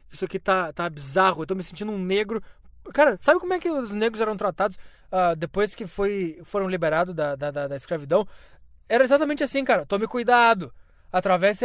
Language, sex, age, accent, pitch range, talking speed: Portuguese, male, 20-39, Brazilian, 170-250 Hz, 195 wpm